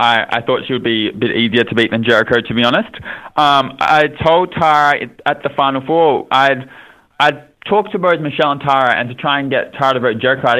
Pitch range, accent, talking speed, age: 120-150 Hz, Australian, 240 wpm, 20-39